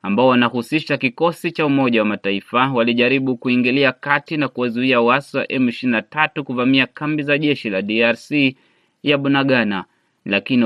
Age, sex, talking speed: 30-49, male, 125 wpm